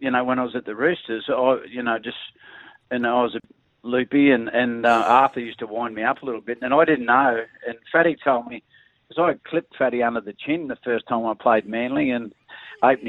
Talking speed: 245 wpm